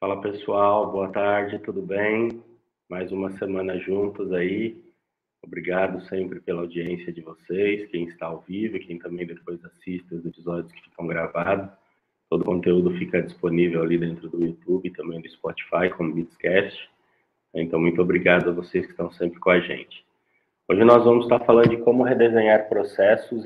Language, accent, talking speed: Portuguese, Brazilian, 165 wpm